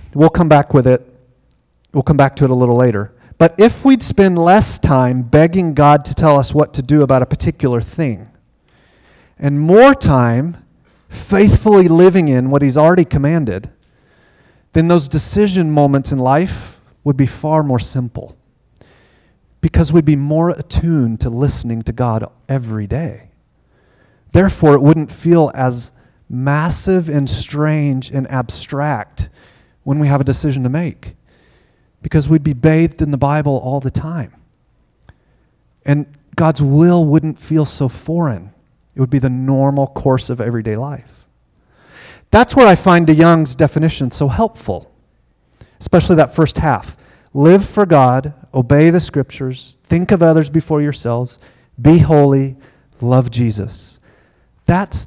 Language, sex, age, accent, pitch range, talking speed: English, male, 30-49, American, 125-160 Hz, 145 wpm